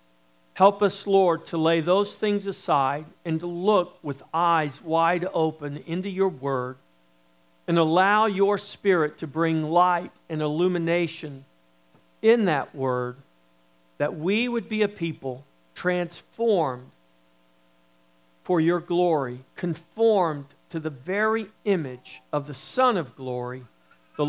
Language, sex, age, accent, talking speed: English, male, 50-69, American, 125 wpm